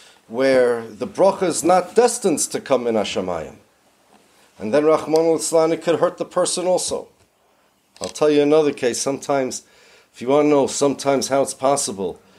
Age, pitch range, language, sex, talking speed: 40-59, 115-150 Hz, English, male, 170 wpm